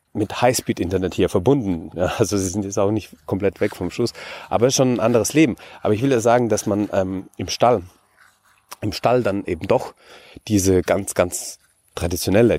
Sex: male